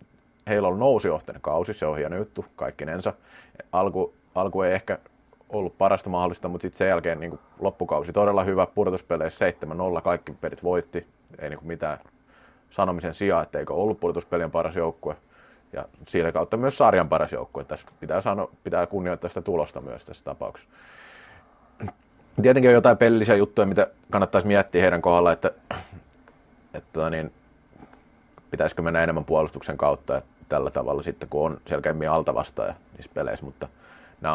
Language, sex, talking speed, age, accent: Finnish, male, 155 wpm, 30-49, native